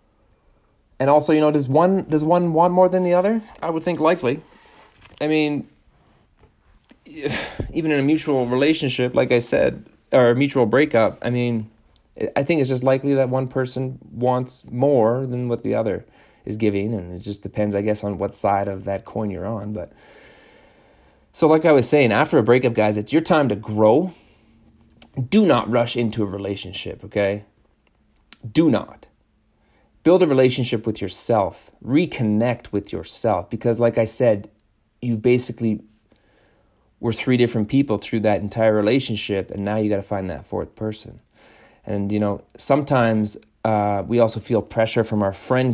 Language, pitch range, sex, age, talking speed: English, 105-130 Hz, male, 30-49, 170 wpm